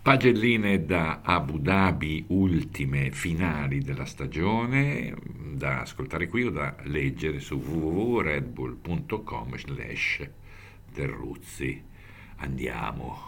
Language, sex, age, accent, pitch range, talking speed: Italian, male, 60-79, native, 75-100 Hz, 70 wpm